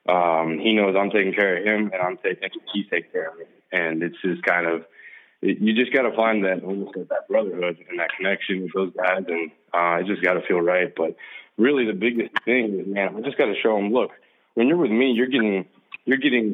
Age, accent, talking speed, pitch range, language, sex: 20-39, American, 225 wpm, 95-110 Hz, English, male